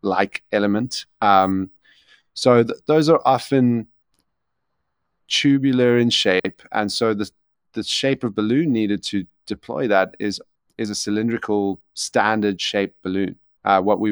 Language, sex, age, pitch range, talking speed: English, male, 30-49, 95-120 Hz, 135 wpm